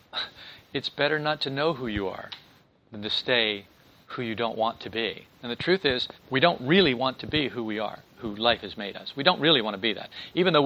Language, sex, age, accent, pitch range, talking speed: English, male, 40-59, American, 115-145 Hz, 250 wpm